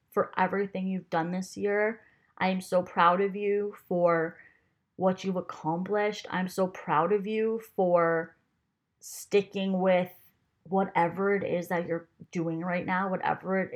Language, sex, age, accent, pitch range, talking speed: English, female, 20-39, American, 170-195 Hz, 150 wpm